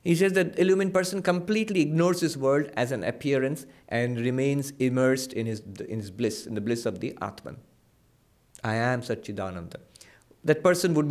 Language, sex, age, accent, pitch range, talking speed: English, male, 50-69, Indian, 120-175 Hz, 165 wpm